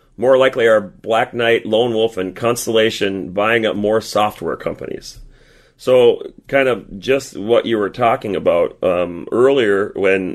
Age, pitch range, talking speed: 40-59, 100-125 Hz, 150 wpm